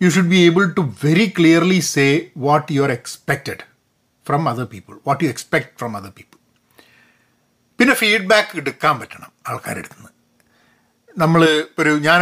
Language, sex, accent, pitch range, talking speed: Malayalam, male, native, 140-200 Hz, 145 wpm